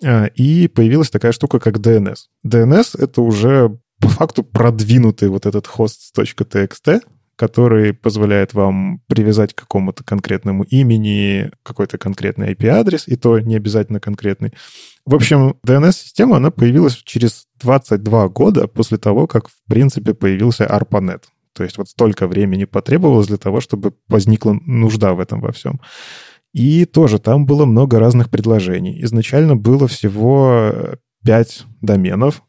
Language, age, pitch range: Russian, 20-39, 105-130 Hz